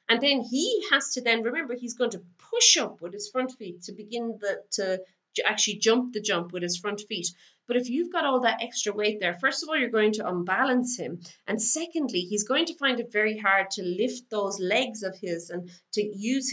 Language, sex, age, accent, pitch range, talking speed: English, female, 30-49, Irish, 190-250 Hz, 225 wpm